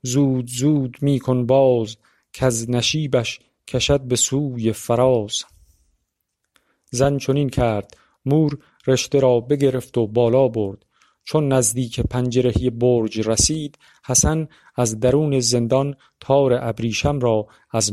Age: 40-59